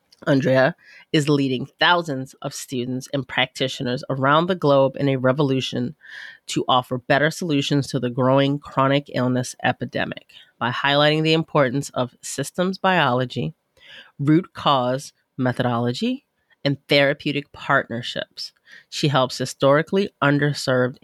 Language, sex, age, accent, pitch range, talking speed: English, female, 30-49, American, 130-150 Hz, 115 wpm